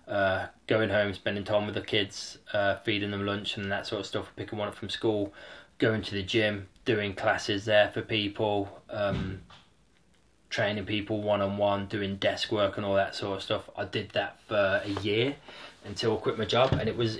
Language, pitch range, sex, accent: English, 100-115 Hz, male, British